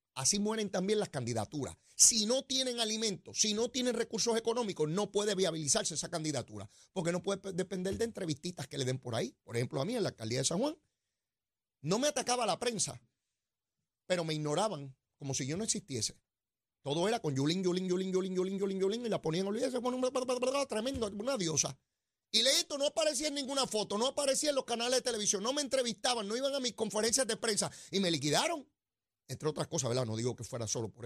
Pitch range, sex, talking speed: 150-235 Hz, male, 210 wpm